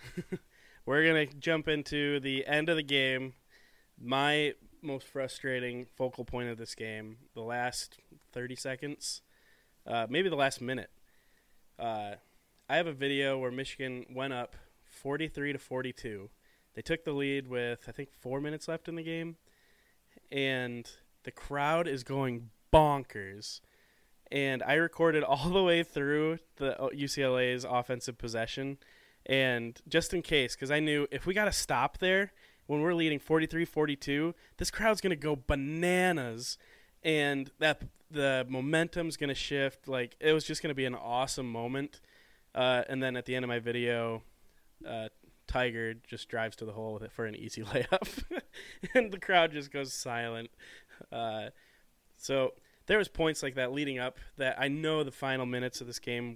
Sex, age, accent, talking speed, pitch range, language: male, 20-39, American, 160 wpm, 125-155 Hz, English